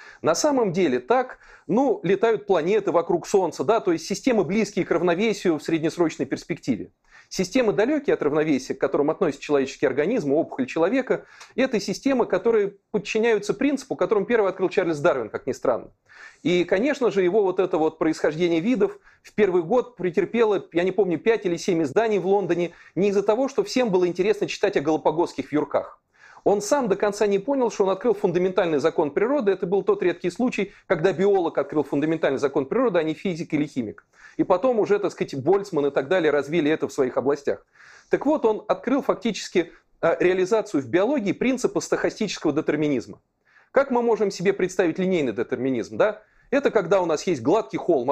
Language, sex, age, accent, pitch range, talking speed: Russian, male, 40-59, native, 180-250 Hz, 180 wpm